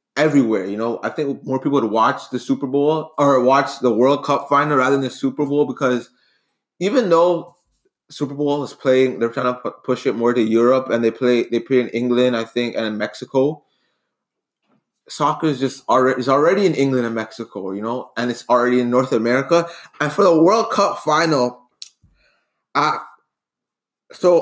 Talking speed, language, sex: 185 wpm, English, male